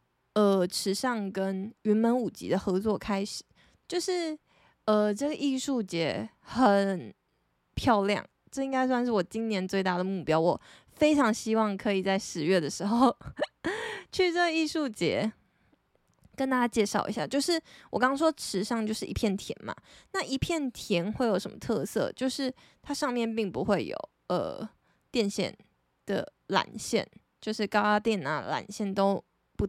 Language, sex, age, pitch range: Chinese, female, 20-39, 195-260 Hz